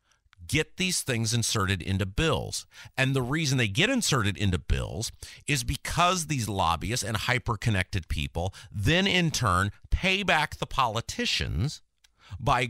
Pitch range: 95-145 Hz